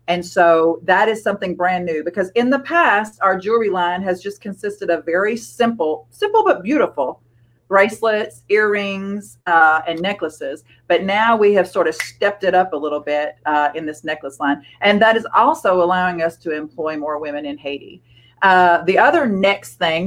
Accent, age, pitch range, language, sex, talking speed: American, 40-59, 160-200 Hz, English, female, 185 wpm